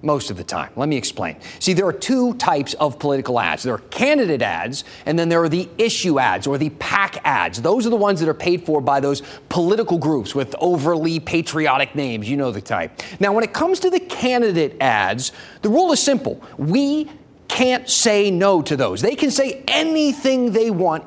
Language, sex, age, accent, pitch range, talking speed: English, male, 30-49, American, 140-200 Hz, 210 wpm